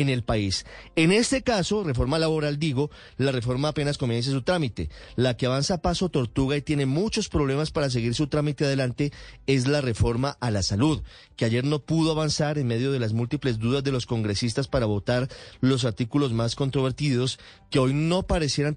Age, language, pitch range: 30-49, Spanish, 120-150 Hz